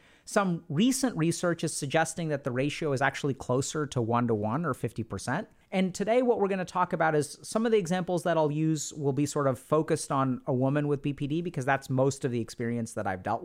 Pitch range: 135-190 Hz